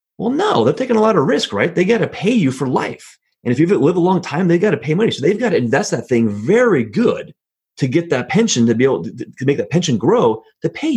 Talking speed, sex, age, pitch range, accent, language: 285 wpm, male, 30-49, 120-190 Hz, American, English